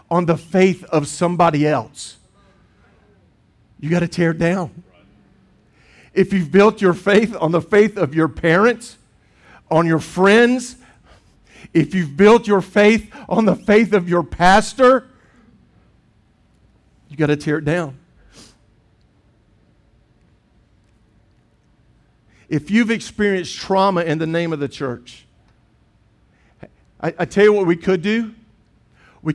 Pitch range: 150-195 Hz